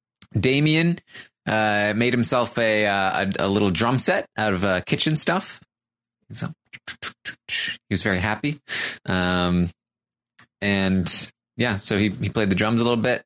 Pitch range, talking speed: 105-130 Hz, 145 wpm